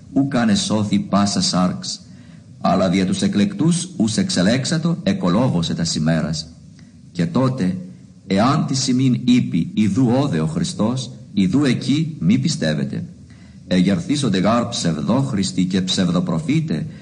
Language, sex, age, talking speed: Greek, male, 50-69, 120 wpm